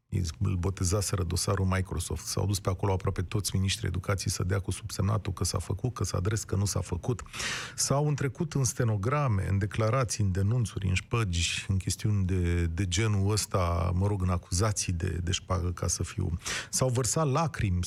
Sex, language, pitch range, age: male, Romanian, 100-155 Hz, 40-59